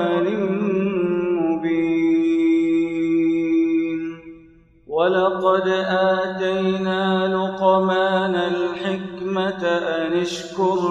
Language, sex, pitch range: Arabic, male, 165-190 Hz